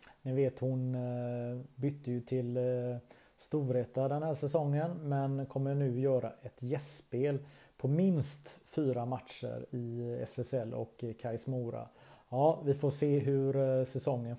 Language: Swedish